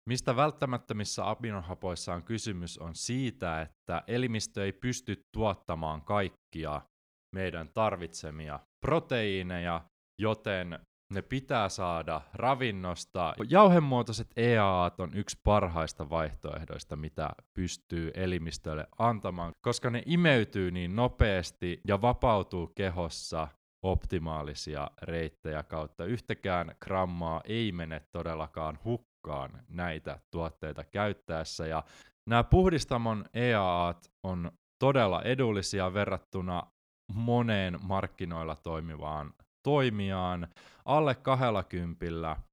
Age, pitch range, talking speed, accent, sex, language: 20-39, 85-110 Hz, 90 wpm, native, male, Finnish